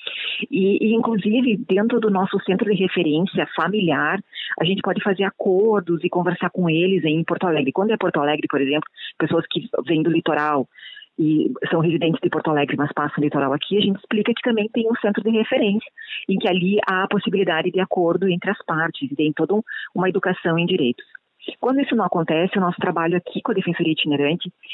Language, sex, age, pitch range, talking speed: Portuguese, female, 40-59, 175-225 Hz, 200 wpm